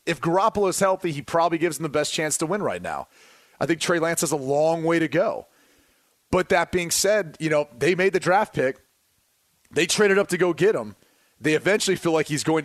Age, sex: 30-49, male